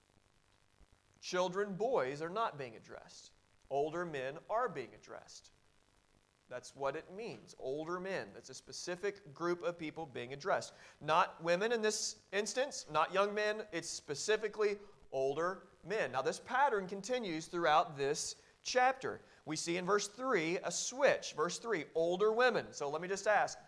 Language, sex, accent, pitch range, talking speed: English, male, American, 150-210 Hz, 150 wpm